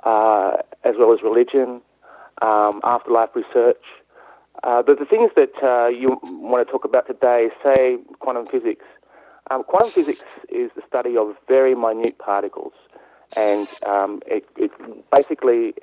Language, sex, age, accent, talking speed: English, male, 40-59, Australian, 145 wpm